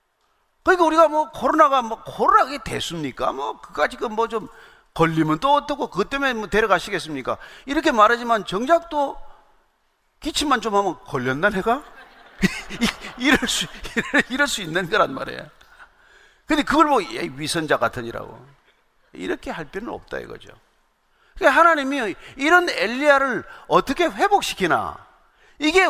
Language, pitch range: Korean, 200-310 Hz